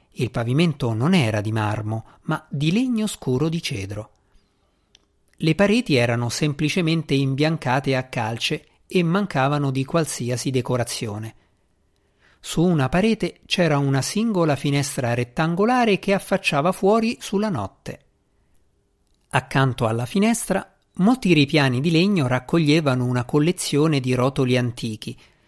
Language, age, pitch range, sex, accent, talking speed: Italian, 50-69, 120-170 Hz, male, native, 120 wpm